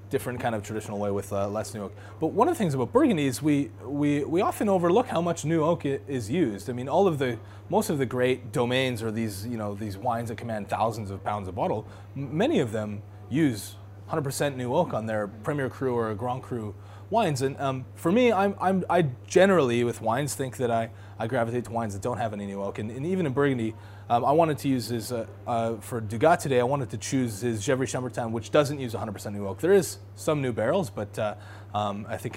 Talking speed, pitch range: 240 wpm, 105-135 Hz